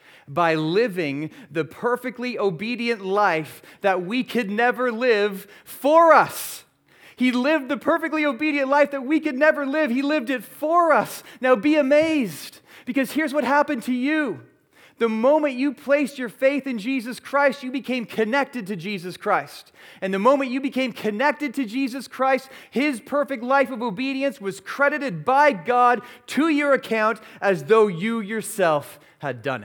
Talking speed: 160 wpm